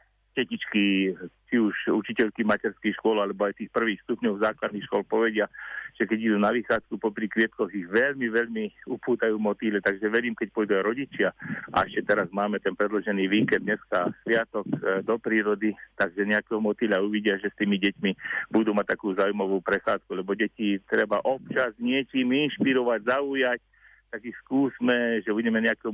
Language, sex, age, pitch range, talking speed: Slovak, male, 50-69, 105-120 Hz, 155 wpm